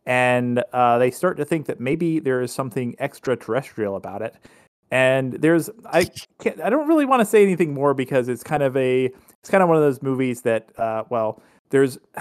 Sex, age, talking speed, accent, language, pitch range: male, 30-49, 205 wpm, American, English, 115-135 Hz